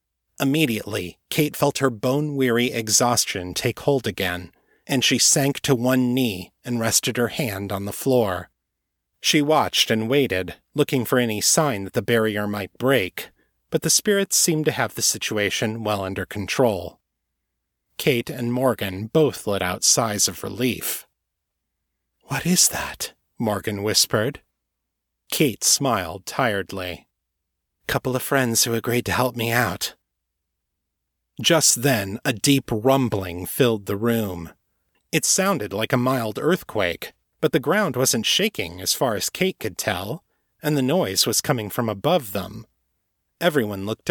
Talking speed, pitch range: 145 wpm, 95-135 Hz